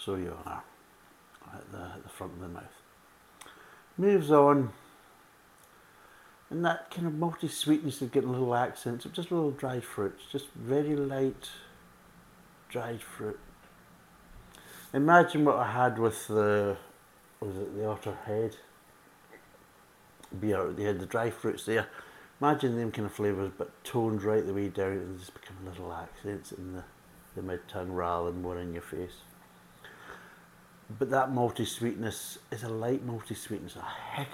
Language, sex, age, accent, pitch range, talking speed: English, male, 60-79, British, 100-140 Hz, 155 wpm